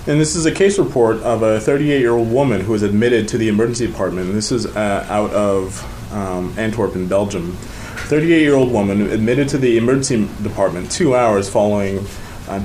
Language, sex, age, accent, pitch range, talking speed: English, male, 30-49, American, 105-125 Hz, 175 wpm